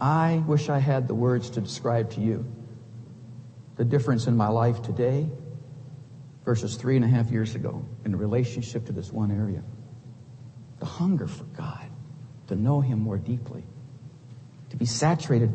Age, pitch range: 60-79, 125-150 Hz